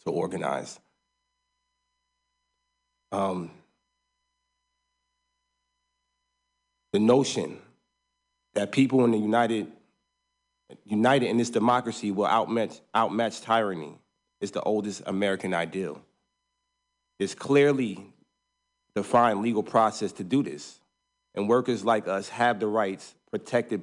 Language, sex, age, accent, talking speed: English, male, 30-49, American, 100 wpm